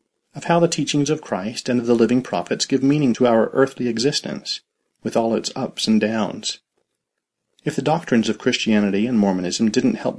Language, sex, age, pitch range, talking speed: English, male, 40-59, 110-135 Hz, 190 wpm